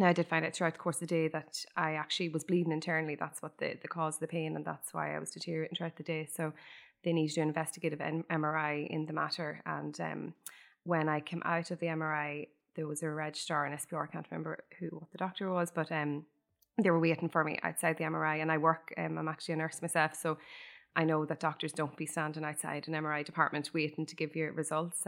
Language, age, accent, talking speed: English, 20-39, Irish, 245 wpm